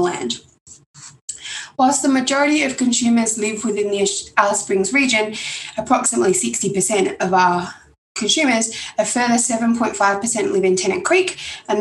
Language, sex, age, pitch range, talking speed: English, female, 20-39, 205-265 Hz, 125 wpm